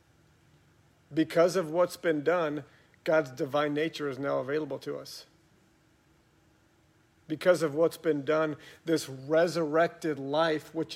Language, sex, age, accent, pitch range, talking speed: English, male, 50-69, American, 150-170 Hz, 120 wpm